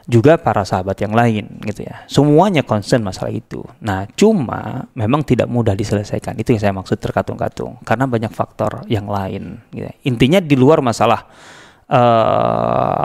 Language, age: Indonesian, 30-49